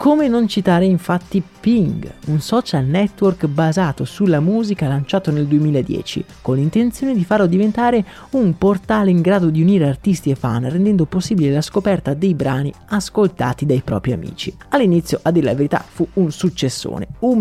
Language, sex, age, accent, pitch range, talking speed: Italian, male, 30-49, native, 145-195 Hz, 160 wpm